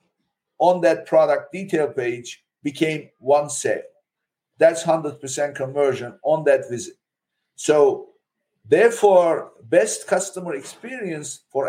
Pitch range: 145-195 Hz